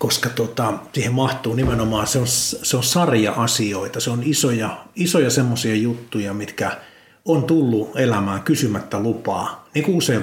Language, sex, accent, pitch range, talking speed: Finnish, male, native, 105-130 Hz, 145 wpm